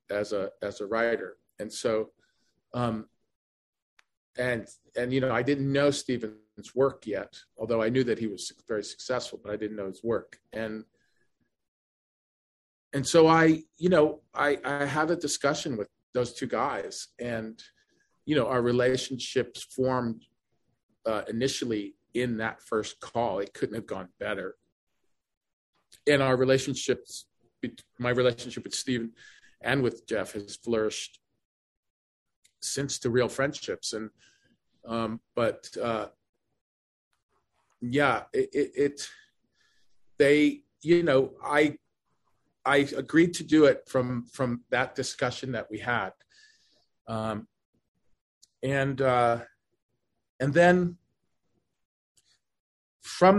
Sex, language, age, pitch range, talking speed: male, English, 40-59, 115-145 Hz, 125 wpm